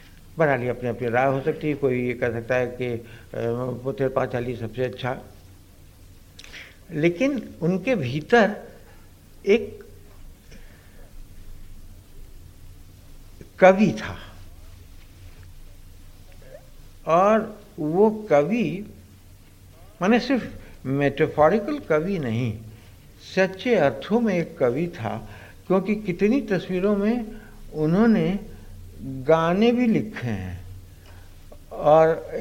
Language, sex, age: Hindi, male, 60-79